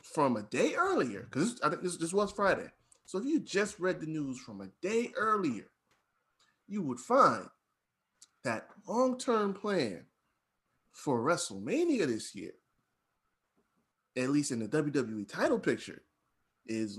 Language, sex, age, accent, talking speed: English, male, 30-49, American, 140 wpm